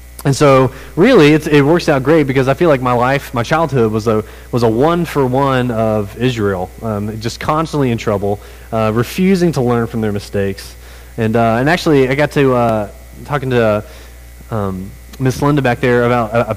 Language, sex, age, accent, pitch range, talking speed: English, male, 30-49, American, 105-135 Hz, 200 wpm